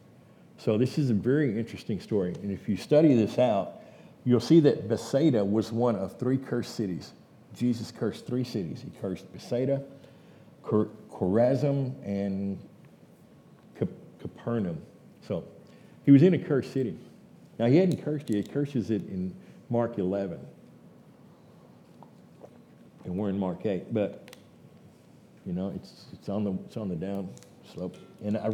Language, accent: English, American